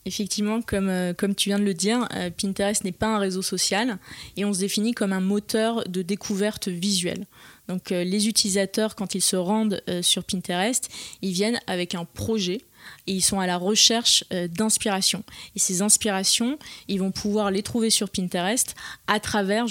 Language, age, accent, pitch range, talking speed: French, 20-39, French, 190-220 Hz, 185 wpm